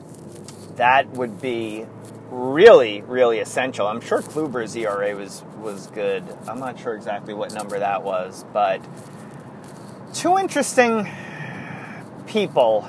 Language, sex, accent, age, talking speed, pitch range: English, male, American, 30-49, 115 wpm, 125-180 Hz